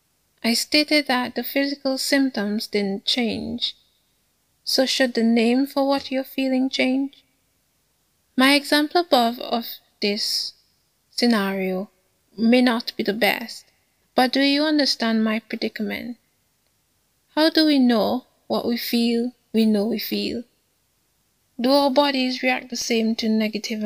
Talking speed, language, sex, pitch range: 135 wpm, English, female, 225-265 Hz